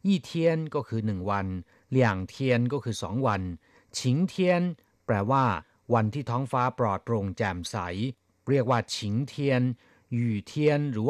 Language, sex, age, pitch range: Thai, male, 50-69, 100-140 Hz